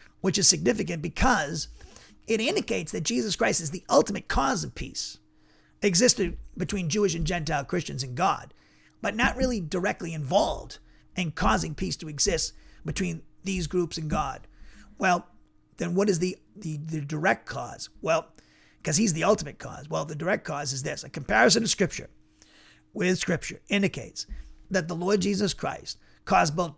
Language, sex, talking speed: English, male, 160 wpm